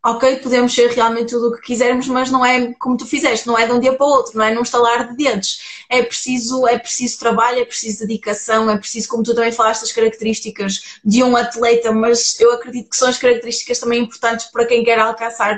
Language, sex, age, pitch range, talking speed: Portuguese, female, 20-39, 230-265 Hz, 230 wpm